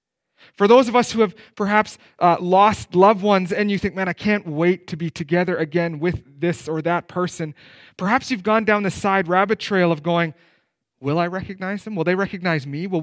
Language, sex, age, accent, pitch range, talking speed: English, male, 30-49, American, 155-205 Hz, 210 wpm